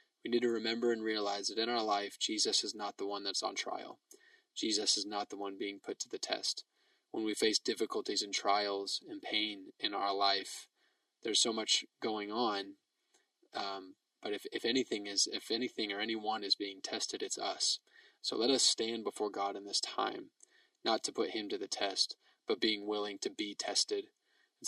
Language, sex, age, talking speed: English, male, 20-39, 200 wpm